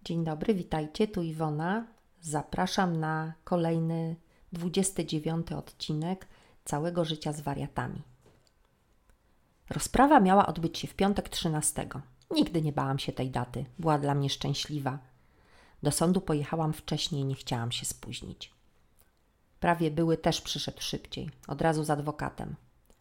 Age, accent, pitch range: 40-59, native, 150-180 Hz